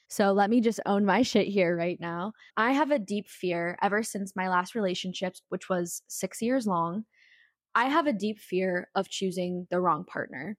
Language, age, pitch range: English, 10-29, 185-210 Hz